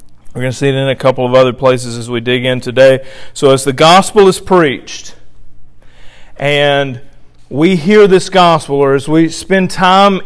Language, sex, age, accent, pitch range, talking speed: English, male, 40-59, American, 140-190 Hz, 185 wpm